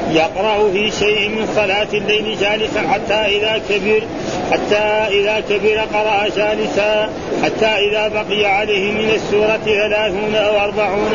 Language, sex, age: Arabic, male, 40-59